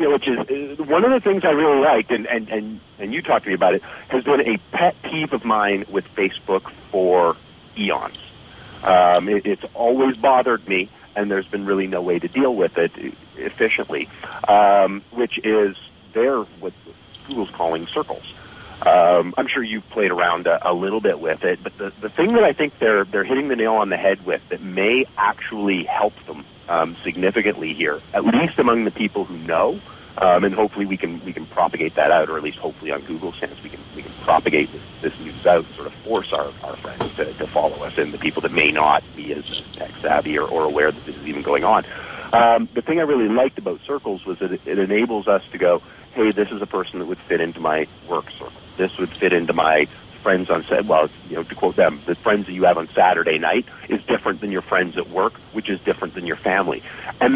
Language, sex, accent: English, male, American